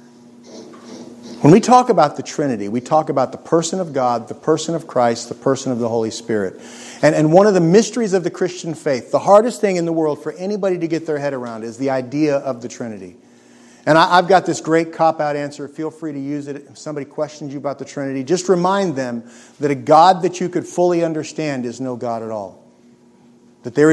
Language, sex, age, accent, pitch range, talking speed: English, male, 50-69, American, 120-170 Hz, 225 wpm